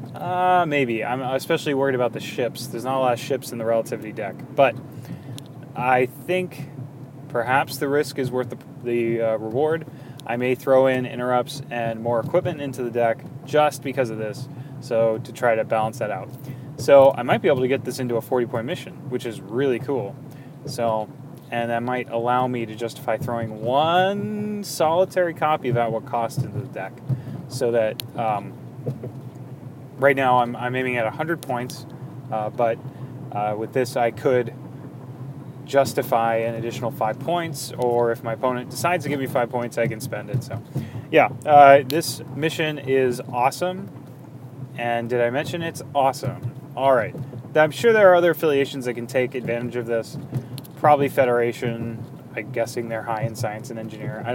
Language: English